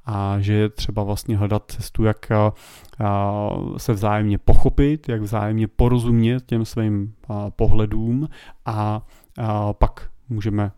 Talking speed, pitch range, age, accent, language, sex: 110 wpm, 105-125 Hz, 30-49, native, Czech, male